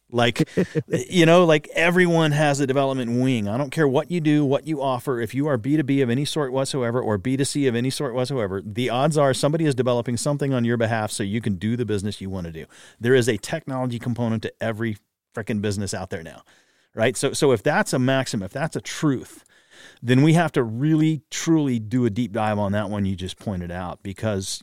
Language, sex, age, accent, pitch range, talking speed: English, male, 40-59, American, 110-150 Hz, 225 wpm